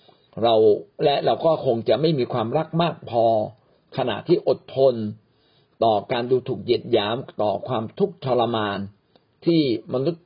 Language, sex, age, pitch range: Thai, male, 50-69, 110-150 Hz